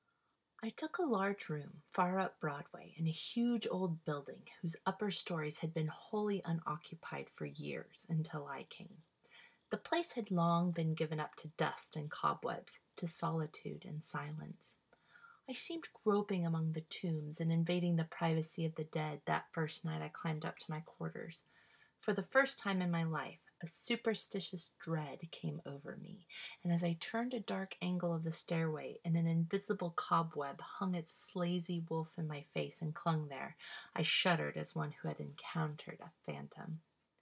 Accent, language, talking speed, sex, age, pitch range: American, English, 175 wpm, female, 30-49, 160-190 Hz